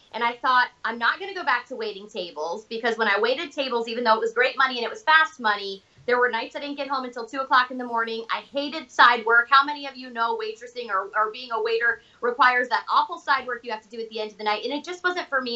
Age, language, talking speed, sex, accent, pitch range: 30-49, English, 295 wpm, female, American, 215-270 Hz